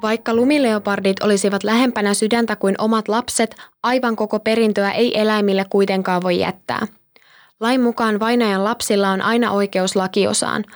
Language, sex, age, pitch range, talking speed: Finnish, female, 20-39, 195-225 Hz, 135 wpm